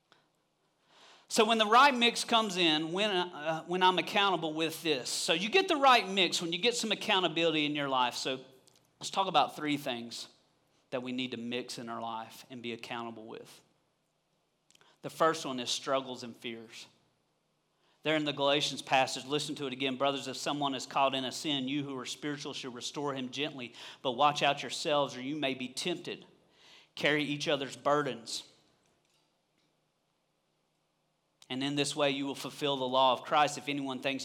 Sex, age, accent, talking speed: male, 40-59, American, 185 wpm